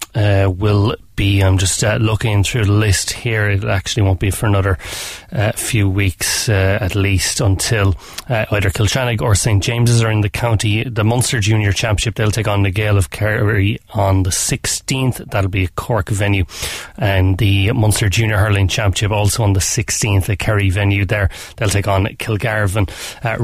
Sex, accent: male, Irish